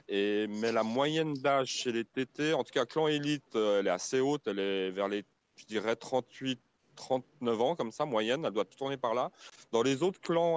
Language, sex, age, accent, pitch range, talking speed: French, male, 30-49, French, 100-135 Hz, 210 wpm